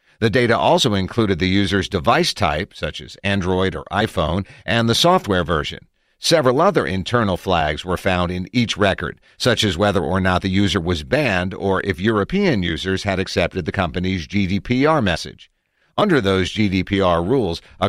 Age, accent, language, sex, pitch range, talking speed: 50-69, American, English, male, 90-115 Hz, 170 wpm